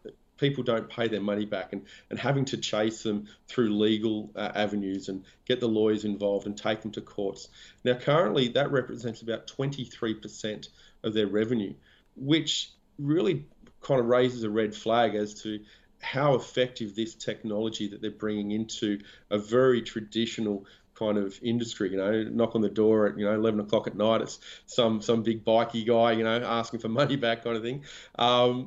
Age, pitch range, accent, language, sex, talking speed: 30-49, 105-120 Hz, Australian, English, male, 185 wpm